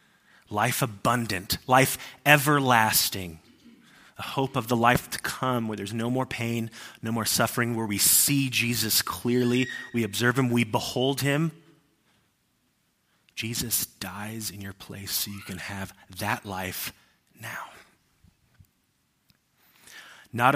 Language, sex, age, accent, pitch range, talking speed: English, male, 30-49, American, 100-125 Hz, 125 wpm